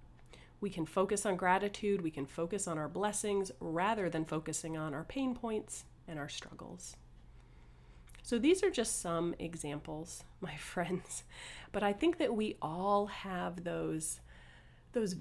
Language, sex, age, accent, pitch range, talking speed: English, female, 30-49, American, 160-210 Hz, 150 wpm